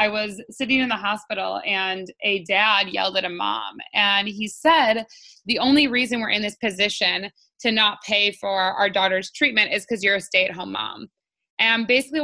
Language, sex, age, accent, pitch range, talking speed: English, female, 20-39, American, 200-240 Hz, 185 wpm